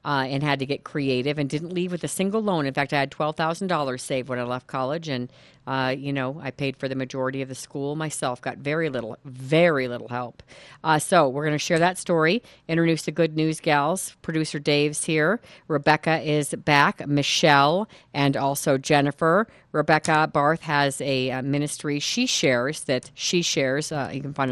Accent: American